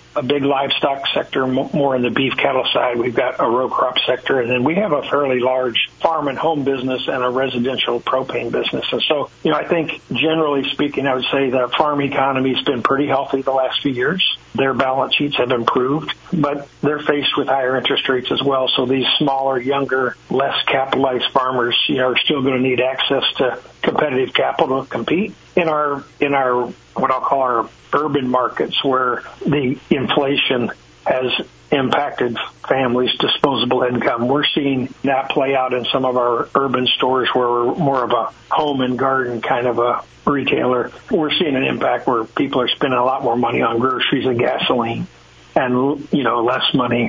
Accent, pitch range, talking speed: American, 125-140 Hz, 190 wpm